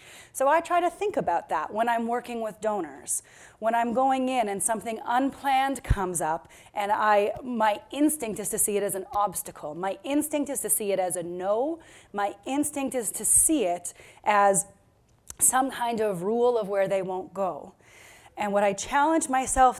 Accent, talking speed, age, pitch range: American, 190 wpm, 30-49, 190-255 Hz